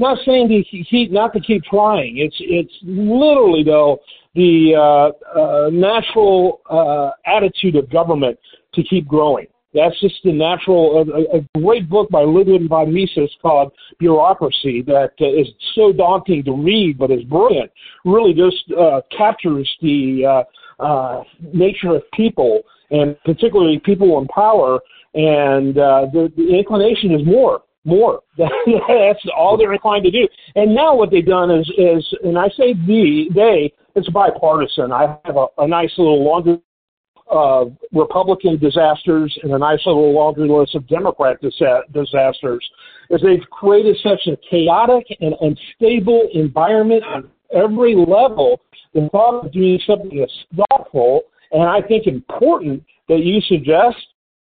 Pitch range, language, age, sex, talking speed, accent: 150-210 Hz, English, 50-69, male, 150 wpm, American